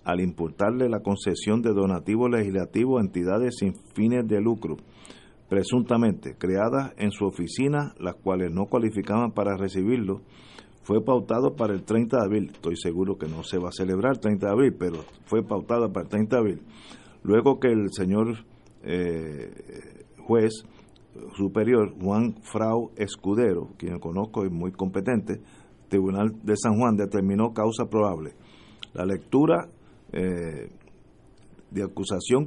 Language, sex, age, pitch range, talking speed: Spanish, male, 50-69, 95-120 Hz, 145 wpm